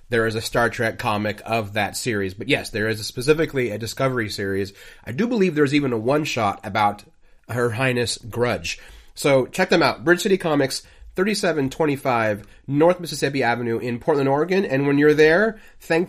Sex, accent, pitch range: male, American, 120-150 Hz